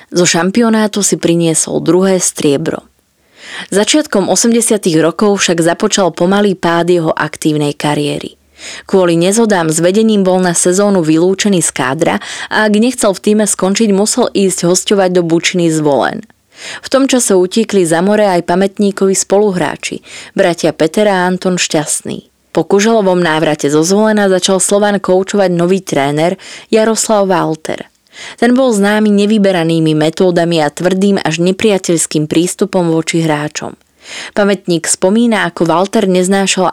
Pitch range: 165-205 Hz